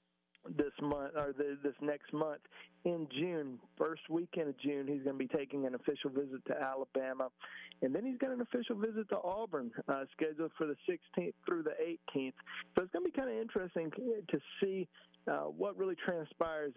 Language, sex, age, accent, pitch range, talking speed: English, male, 50-69, American, 145-170 Hz, 190 wpm